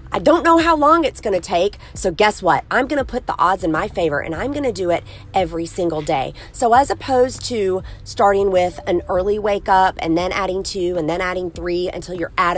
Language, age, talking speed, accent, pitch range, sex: English, 30-49, 245 wpm, American, 170-240 Hz, female